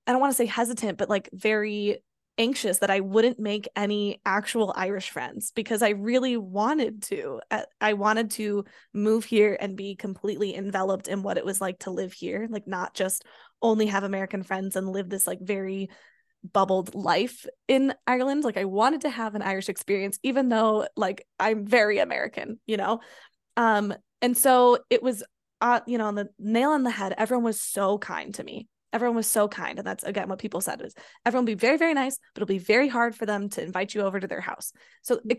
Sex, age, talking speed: female, 10-29, 210 wpm